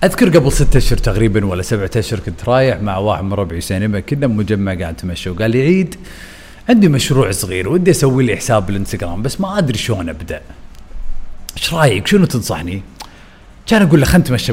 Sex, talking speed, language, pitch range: male, 180 wpm, Arabic, 110-155 Hz